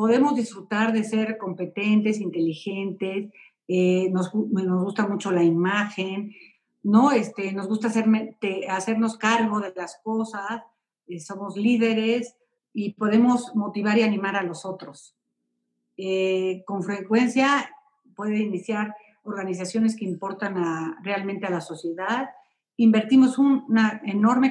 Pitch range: 190-235 Hz